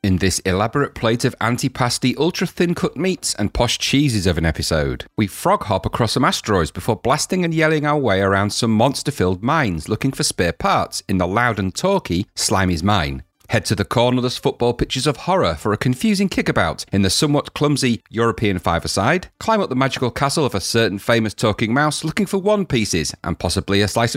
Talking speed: 190 wpm